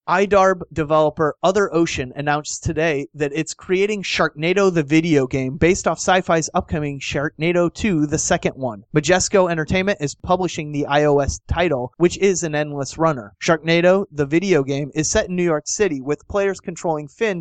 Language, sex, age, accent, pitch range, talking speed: English, male, 30-49, American, 140-175 Hz, 165 wpm